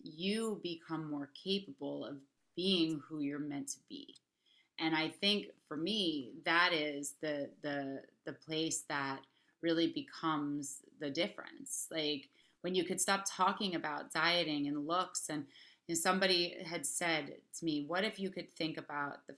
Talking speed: 160 wpm